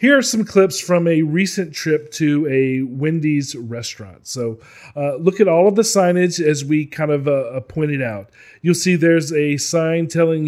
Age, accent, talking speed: 40-59, American, 190 wpm